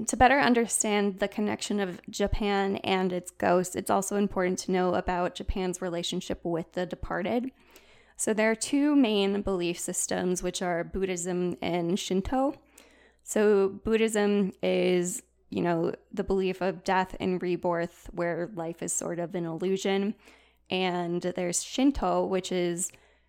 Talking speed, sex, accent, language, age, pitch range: 145 wpm, female, American, English, 20-39, 180-200 Hz